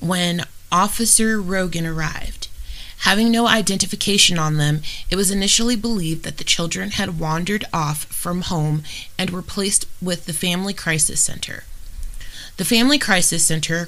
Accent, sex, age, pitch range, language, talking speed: American, female, 30-49, 155-195 Hz, English, 145 wpm